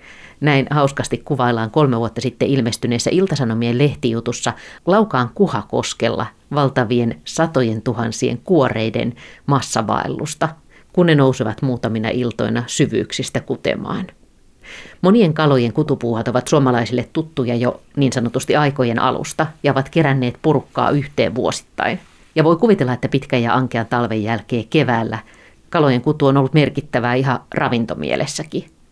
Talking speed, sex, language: 120 wpm, female, Finnish